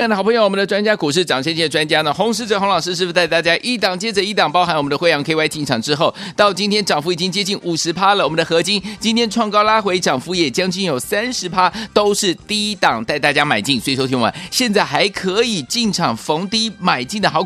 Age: 30-49